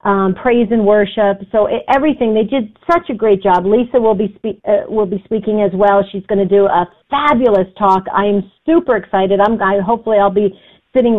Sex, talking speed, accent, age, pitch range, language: female, 205 wpm, American, 50-69, 195-245 Hz, English